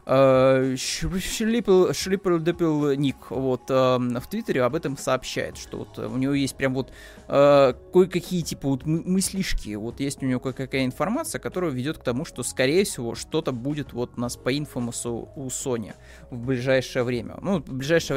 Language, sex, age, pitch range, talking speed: Russian, male, 20-39, 125-150 Hz, 140 wpm